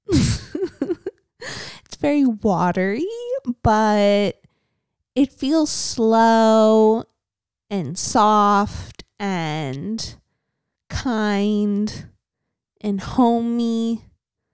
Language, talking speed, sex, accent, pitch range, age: English, 55 wpm, female, American, 185-240 Hz, 20-39